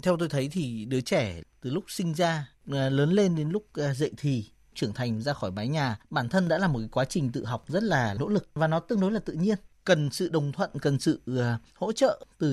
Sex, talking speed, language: male, 245 wpm, Vietnamese